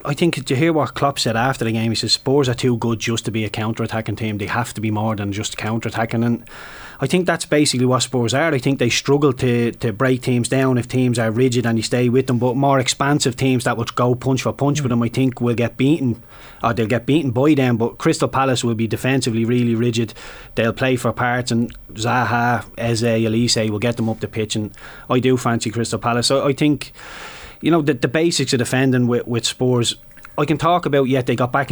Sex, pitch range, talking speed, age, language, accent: male, 115-135 Hz, 245 wpm, 20-39, English, Irish